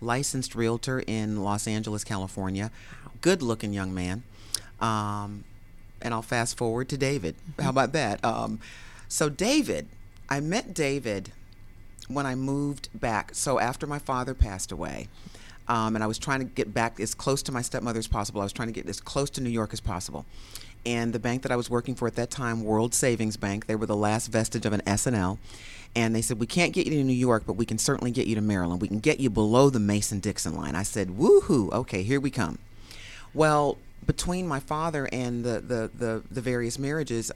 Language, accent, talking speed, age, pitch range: English, American, 200 wpm, 40-59, 105-125 Hz